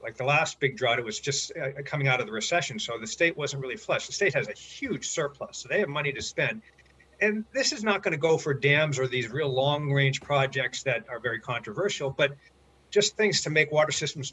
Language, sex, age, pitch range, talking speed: English, male, 50-69, 125-155 Hz, 240 wpm